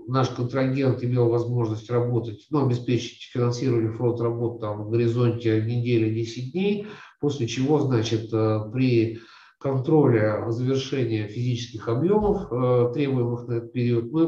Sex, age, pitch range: male, 50-69, 115-140 Hz